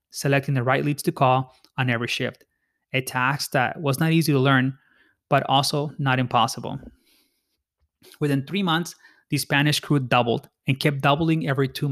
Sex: male